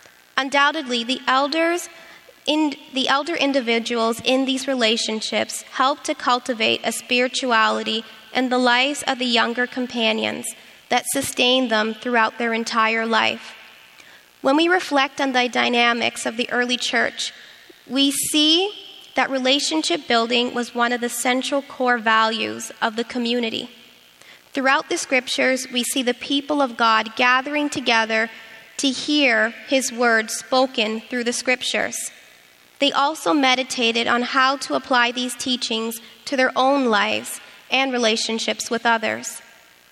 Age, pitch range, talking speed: 20-39, 235-275 Hz, 135 wpm